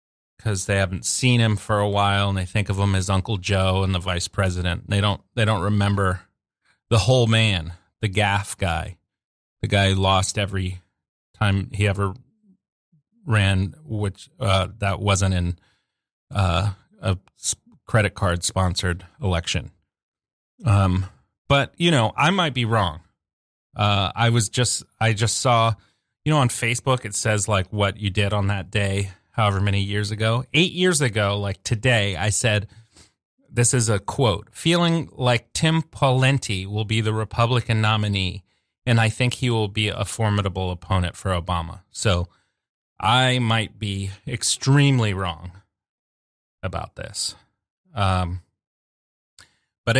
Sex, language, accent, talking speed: male, English, American, 150 wpm